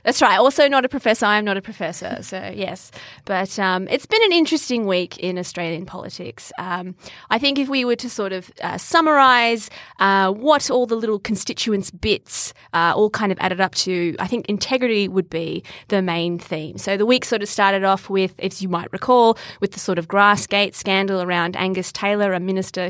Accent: Australian